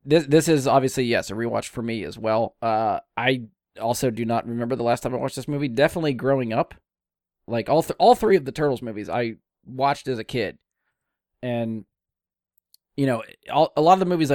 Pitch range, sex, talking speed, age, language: 110-140 Hz, male, 210 wpm, 20-39, English